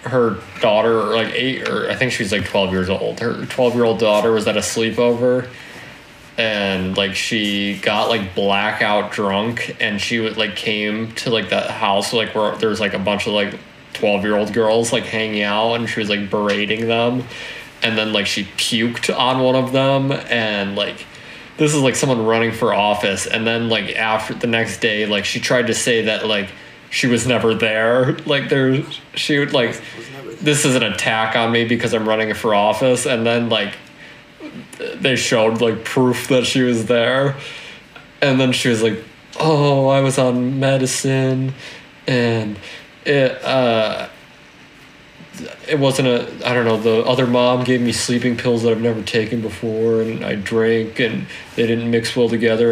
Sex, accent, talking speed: male, American, 185 wpm